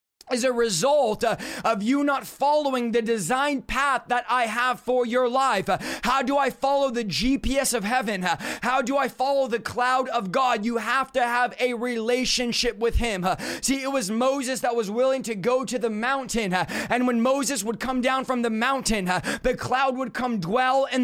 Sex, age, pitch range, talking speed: male, 30-49, 240-270 Hz, 195 wpm